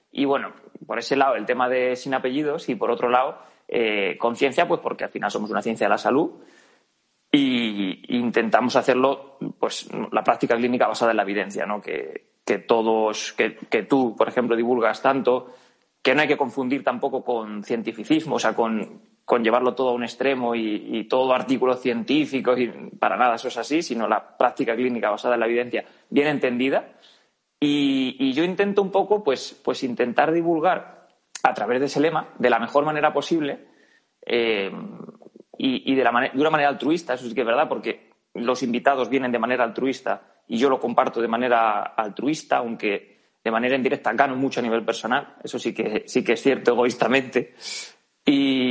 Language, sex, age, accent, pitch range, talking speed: Spanish, male, 20-39, Spanish, 120-150 Hz, 190 wpm